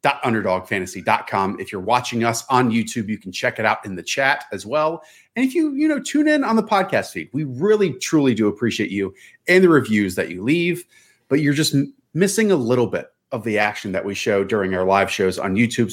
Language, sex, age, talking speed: English, male, 30-49, 230 wpm